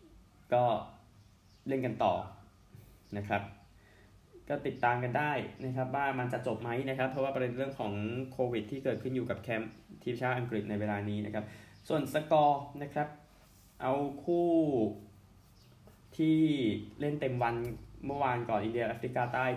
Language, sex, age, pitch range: Thai, male, 20-39, 105-130 Hz